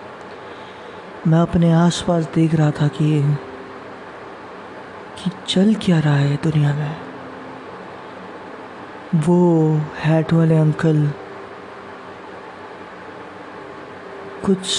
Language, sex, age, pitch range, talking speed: Hindi, female, 20-39, 145-165 Hz, 80 wpm